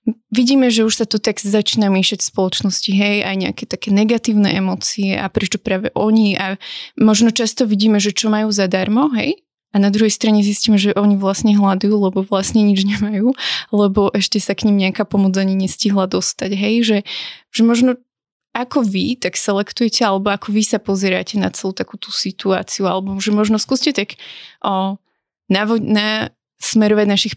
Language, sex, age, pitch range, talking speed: Slovak, female, 20-39, 195-215 Hz, 170 wpm